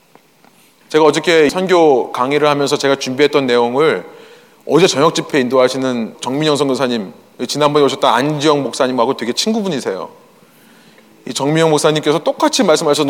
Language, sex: Korean, male